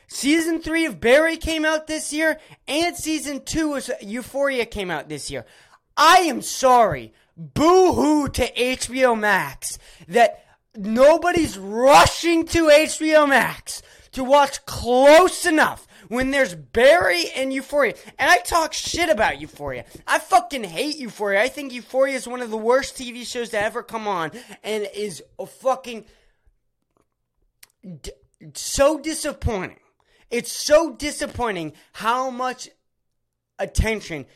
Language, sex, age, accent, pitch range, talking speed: English, male, 20-39, American, 215-315 Hz, 130 wpm